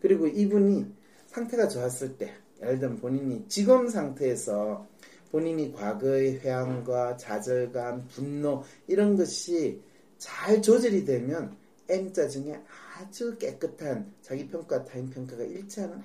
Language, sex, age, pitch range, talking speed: English, male, 40-59, 125-180 Hz, 110 wpm